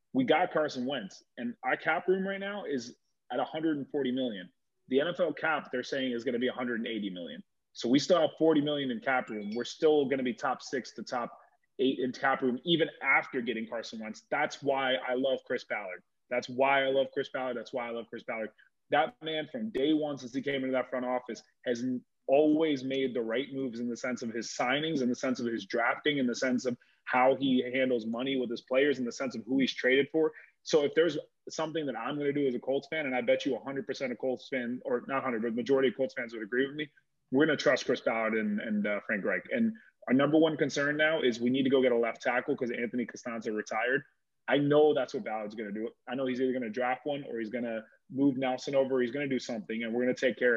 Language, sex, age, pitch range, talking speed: English, male, 30-49, 125-145 Hz, 260 wpm